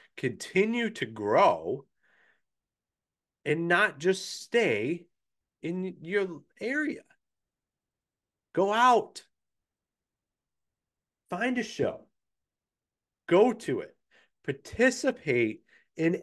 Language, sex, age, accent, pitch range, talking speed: English, male, 30-49, American, 175-230 Hz, 75 wpm